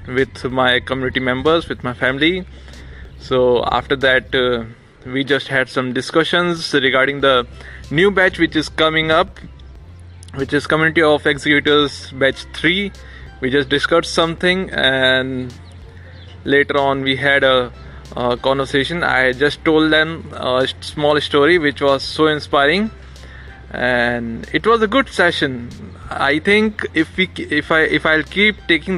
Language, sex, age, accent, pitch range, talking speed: English, male, 20-39, Indian, 115-155 Hz, 145 wpm